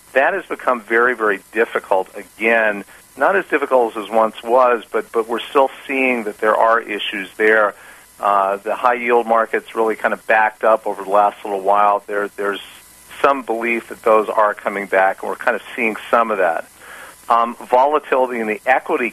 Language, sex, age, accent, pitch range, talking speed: English, male, 50-69, American, 100-120 Hz, 190 wpm